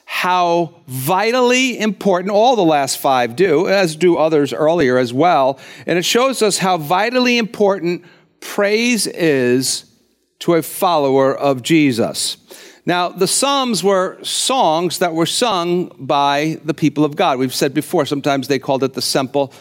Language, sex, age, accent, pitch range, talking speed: English, male, 50-69, American, 150-195 Hz, 155 wpm